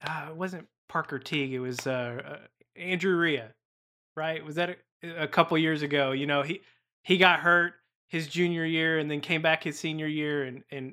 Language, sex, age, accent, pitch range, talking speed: English, male, 20-39, American, 145-175 Hz, 205 wpm